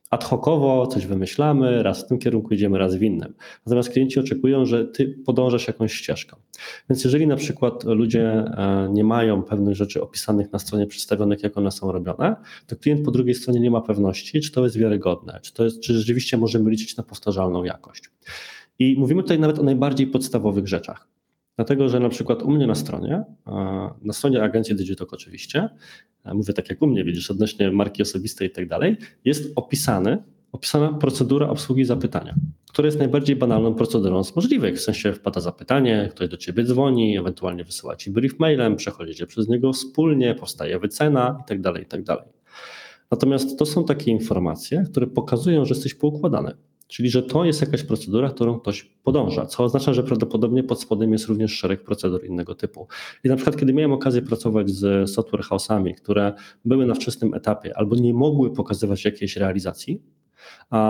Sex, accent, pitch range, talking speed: male, native, 100-130 Hz, 180 wpm